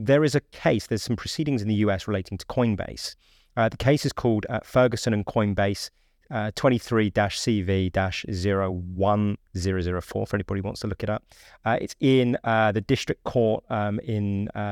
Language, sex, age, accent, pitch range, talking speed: English, male, 30-49, British, 100-125 Hz, 170 wpm